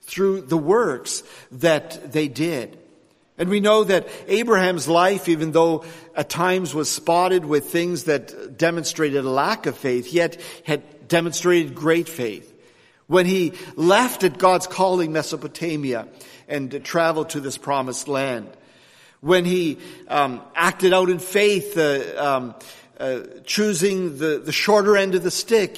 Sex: male